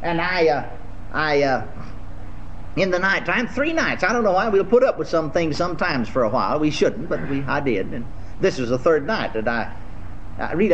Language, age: English, 50-69